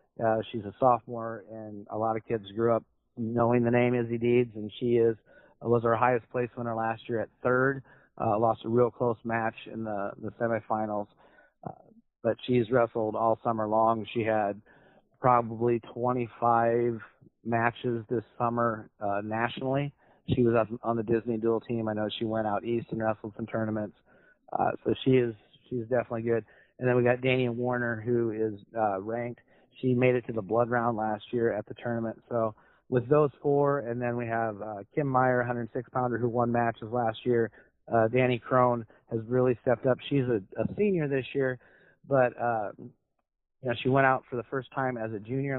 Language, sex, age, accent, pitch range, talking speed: English, male, 40-59, American, 115-125 Hz, 190 wpm